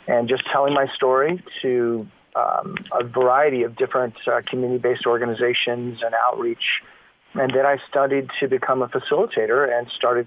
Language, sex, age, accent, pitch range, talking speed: English, male, 40-59, American, 120-150 Hz, 150 wpm